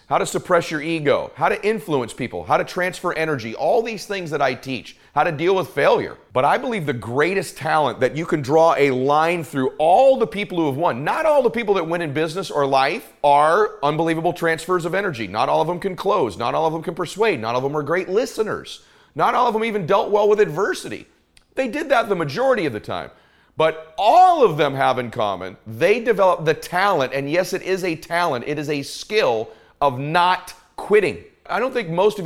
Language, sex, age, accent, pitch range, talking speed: English, male, 40-59, American, 145-190 Hz, 230 wpm